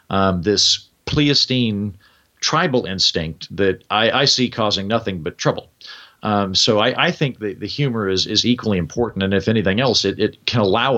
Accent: American